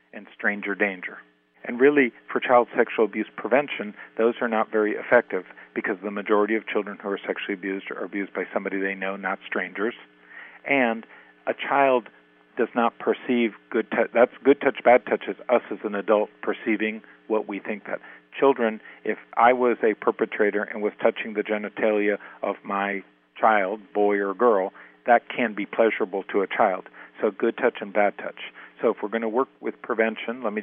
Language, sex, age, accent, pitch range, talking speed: English, male, 50-69, American, 100-110 Hz, 185 wpm